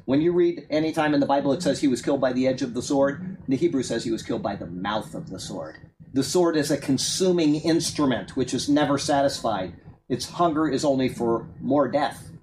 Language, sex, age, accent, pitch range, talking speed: English, male, 40-59, American, 140-180 Hz, 235 wpm